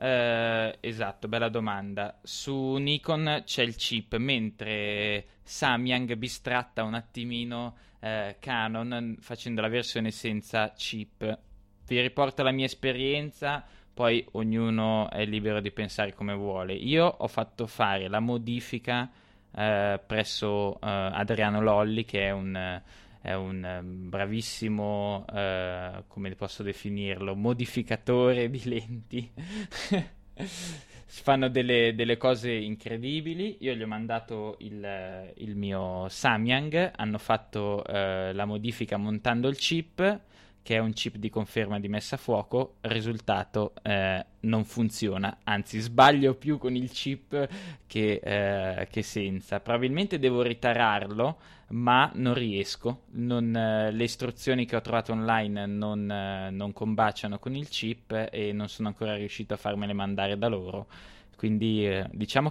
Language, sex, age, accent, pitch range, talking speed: Italian, male, 20-39, native, 100-120 Hz, 130 wpm